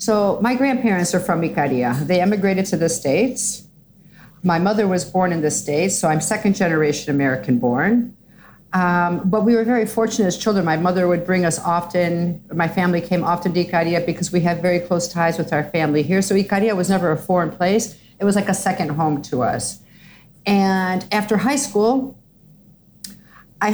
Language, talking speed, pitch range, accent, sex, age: English, 185 wpm, 170-205 Hz, American, female, 50-69